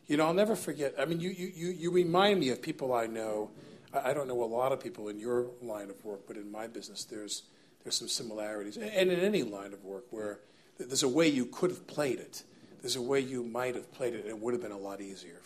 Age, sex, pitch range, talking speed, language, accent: 50-69, male, 105-145 Hz, 260 wpm, English, American